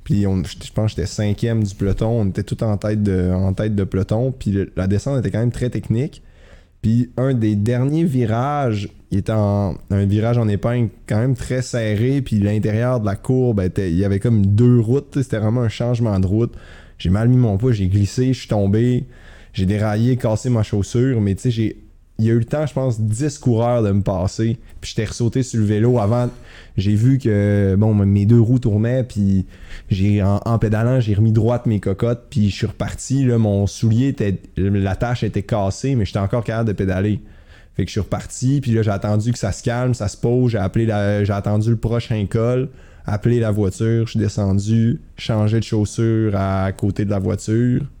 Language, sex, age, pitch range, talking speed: French, male, 20-39, 100-120 Hz, 215 wpm